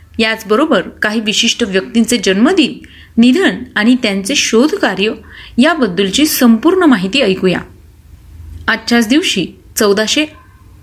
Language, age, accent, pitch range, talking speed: Marathi, 30-49, native, 215-290 Hz, 90 wpm